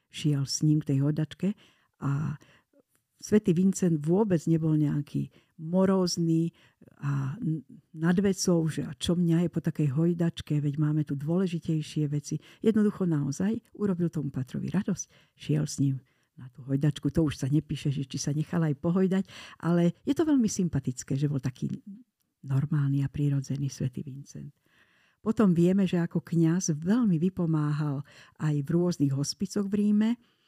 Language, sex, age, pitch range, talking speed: Slovak, female, 50-69, 145-180 Hz, 150 wpm